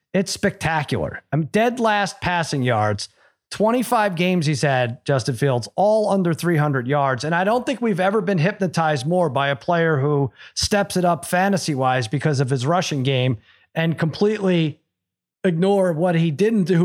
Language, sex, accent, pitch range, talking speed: English, male, American, 155-200 Hz, 165 wpm